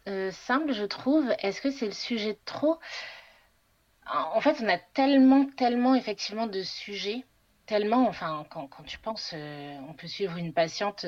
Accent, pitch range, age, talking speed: French, 180-240 Hz, 30-49, 180 wpm